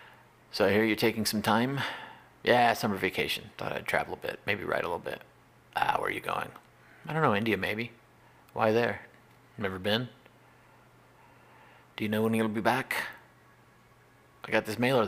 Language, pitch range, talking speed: English, 105-125 Hz, 185 wpm